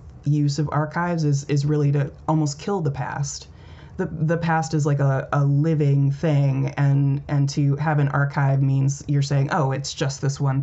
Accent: American